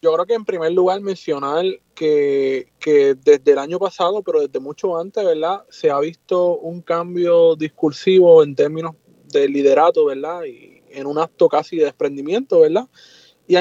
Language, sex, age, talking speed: Spanish, male, 20-39, 170 wpm